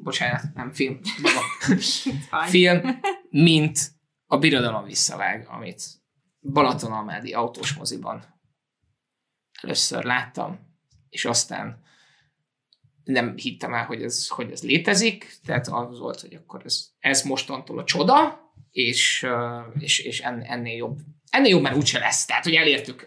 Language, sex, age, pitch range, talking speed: Hungarian, male, 20-39, 125-155 Hz, 120 wpm